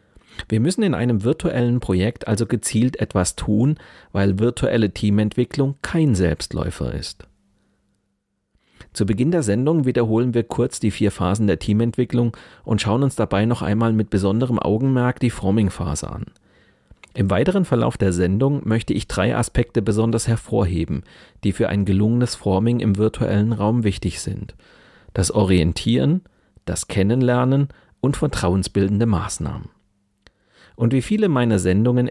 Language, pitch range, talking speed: German, 100-120 Hz, 135 wpm